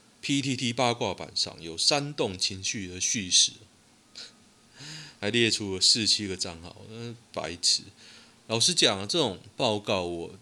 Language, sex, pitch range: Chinese, male, 95-120 Hz